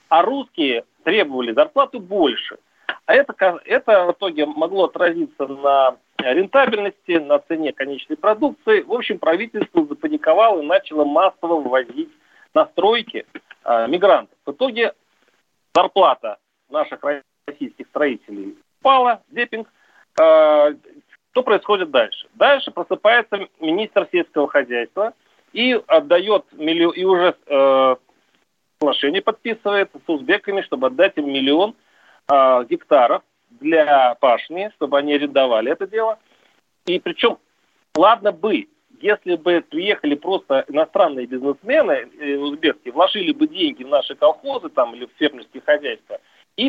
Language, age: Russian, 40-59